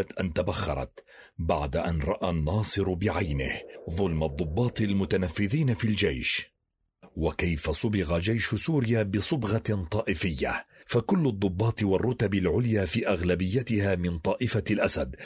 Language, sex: Arabic, male